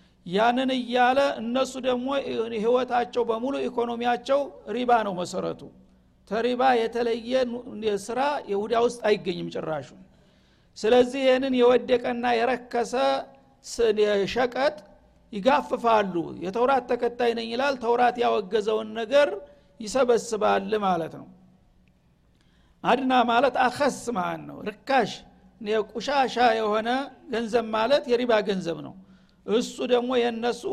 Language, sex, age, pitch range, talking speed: Amharic, male, 60-79, 210-245 Hz, 95 wpm